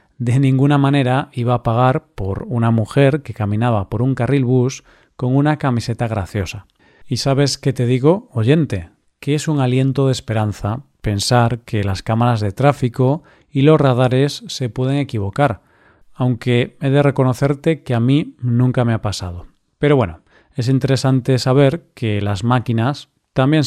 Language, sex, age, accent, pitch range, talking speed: Spanish, male, 40-59, Spanish, 110-140 Hz, 160 wpm